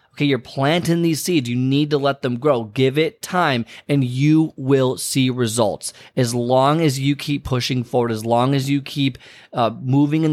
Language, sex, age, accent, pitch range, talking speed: English, male, 30-49, American, 125-150 Hz, 200 wpm